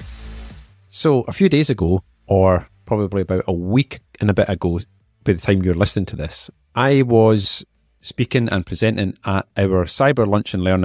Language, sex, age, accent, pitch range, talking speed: English, male, 40-59, British, 90-115 Hz, 175 wpm